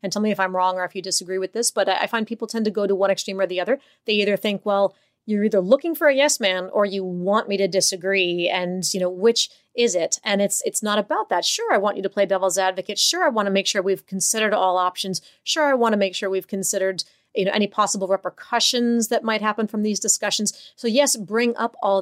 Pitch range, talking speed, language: 190-225 Hz, 260 wpm, English